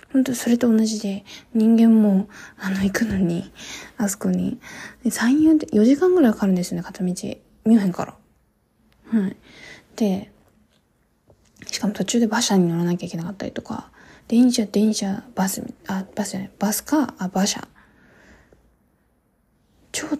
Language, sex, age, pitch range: Japanese, female, 20-39, 190-240 Hz